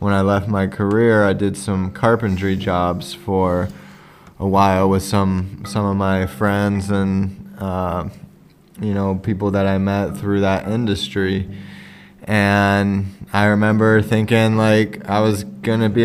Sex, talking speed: male, 145 wpm